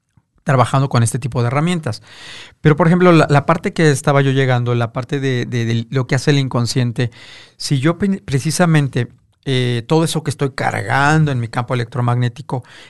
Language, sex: Spanish, male